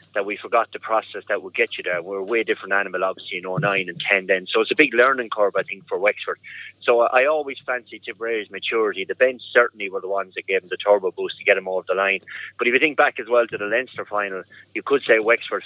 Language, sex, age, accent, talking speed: English, male, 30-49, Irish, 270 wpm